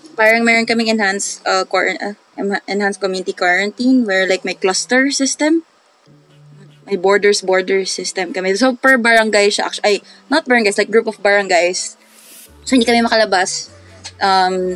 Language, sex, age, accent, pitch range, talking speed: English, female, 20-39, Filipino, 185-230 Hz, 150 wpm